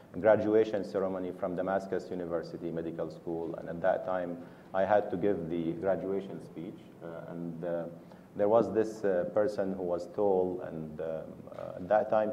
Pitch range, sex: 85-100 Hz, male